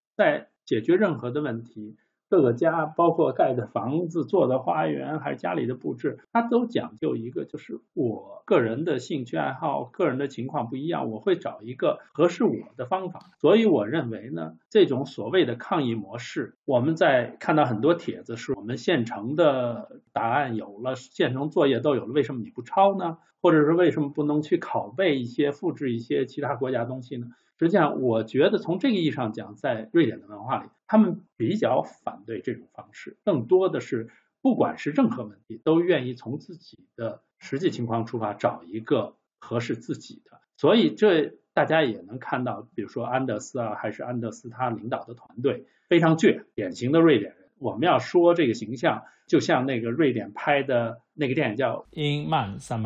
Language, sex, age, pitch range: Chinese, male, 50-69, 115-165 Hz